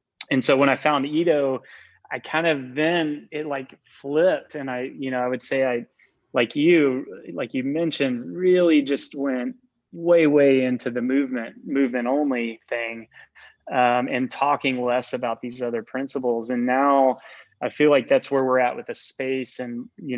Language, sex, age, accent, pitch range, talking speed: English, male, 20-39, American, 120-135 Hz, 175 wpm